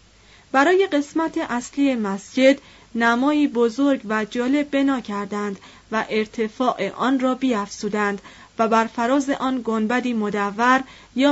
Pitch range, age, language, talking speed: 205-270 Hz, 30-49, Persian, 115 wpm